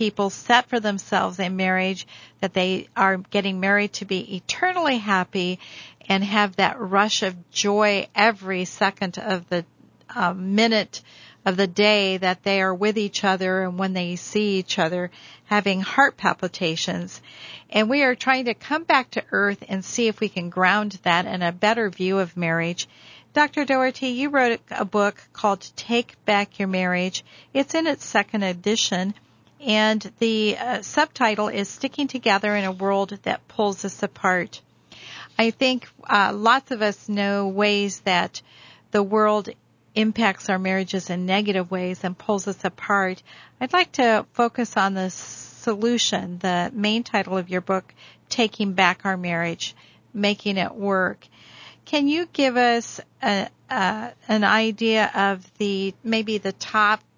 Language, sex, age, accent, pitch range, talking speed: English, female, 50-69, American, 190-220 Hz, 160 wpm